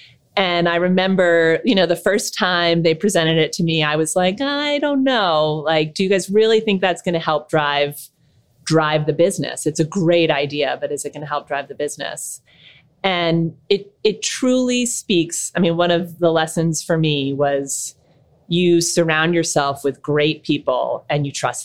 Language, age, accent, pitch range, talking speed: English, 30-49, American, 145-175 Hz, 190 wpm